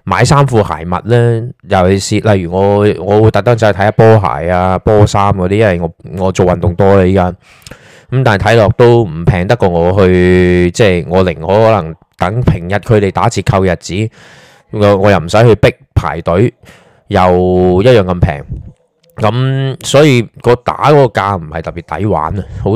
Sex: male